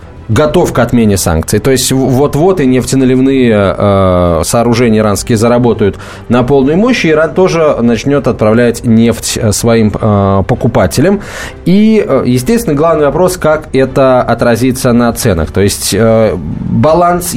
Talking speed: 130 wpm